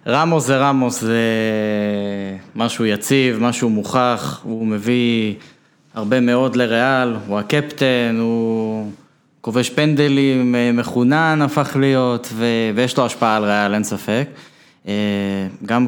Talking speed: 115 wpm